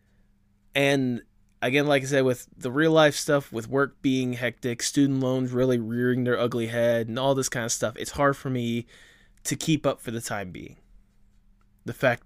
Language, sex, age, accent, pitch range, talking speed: English, male, 20-39, American, 110-140 Hz, 190 wpm